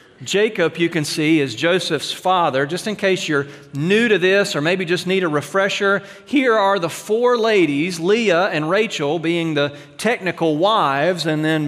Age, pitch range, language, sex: 40-59, 130-175 Hz, English, male